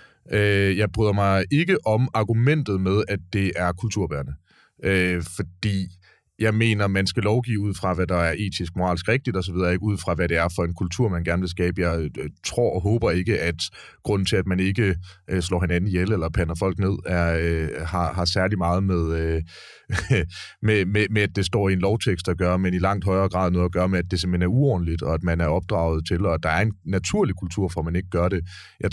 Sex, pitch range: male, 85-100 Hz